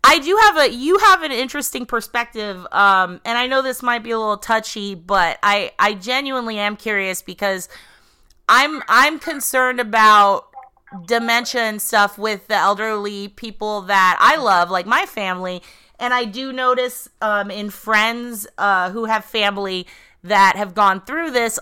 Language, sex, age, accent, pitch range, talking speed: English, female, 30-49, American, 195-240 Hz, 165 wpm